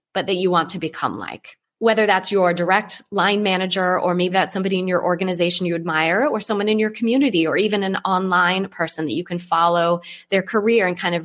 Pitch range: 165-205 Hz